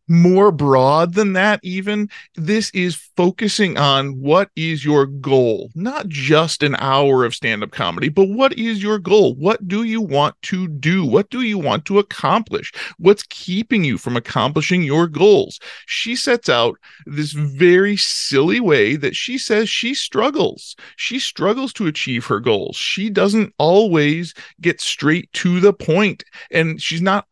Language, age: English, 40-59